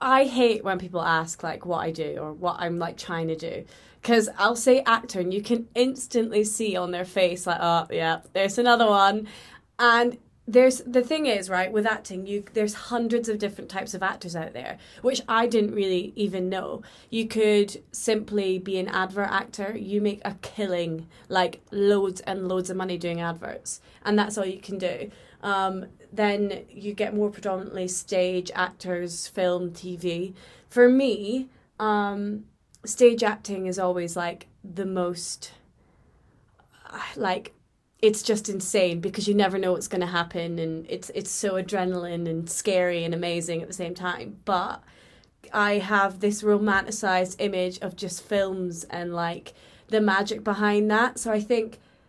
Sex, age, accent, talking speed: female, 20-39, British, 165 wpm